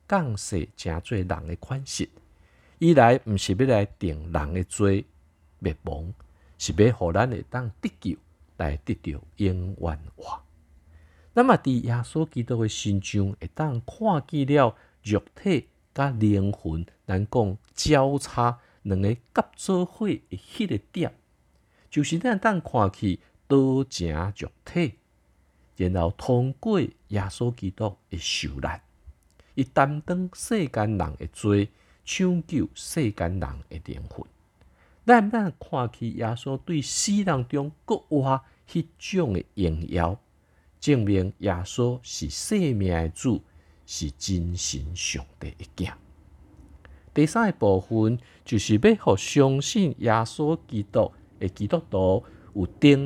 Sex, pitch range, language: male, 85-135 Hz, Chinese